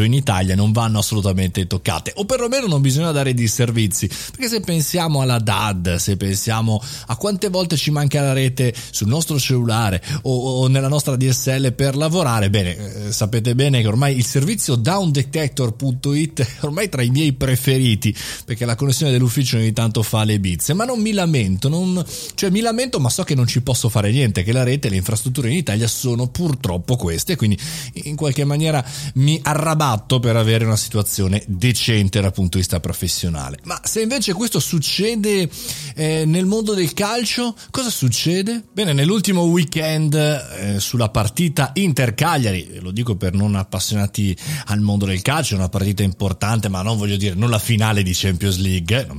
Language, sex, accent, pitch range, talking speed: Italian, male, native, 105-150 Hz, 180 wpm